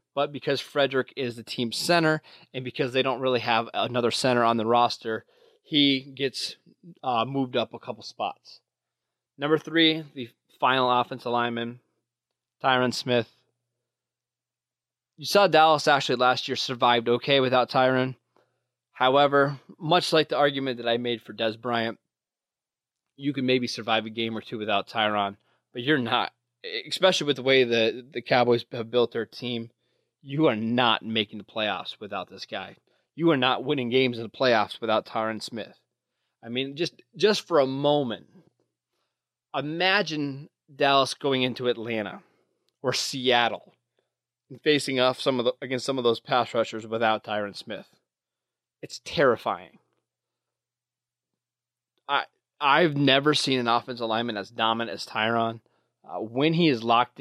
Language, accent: English, American